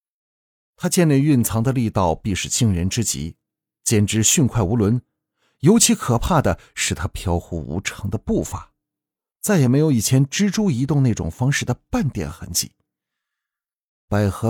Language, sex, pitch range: Chinese, male, 95-130 Hz